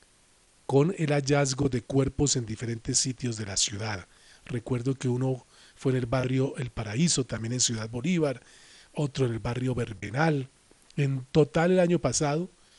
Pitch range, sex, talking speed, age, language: 120-150 Hz, male, 160 wpm, 40-59, Spanish